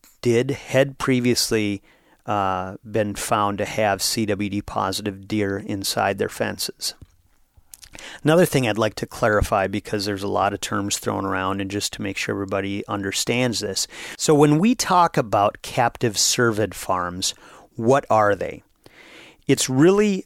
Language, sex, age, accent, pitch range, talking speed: English, male, 40-59, American, 100-130 Hz, 140 wpm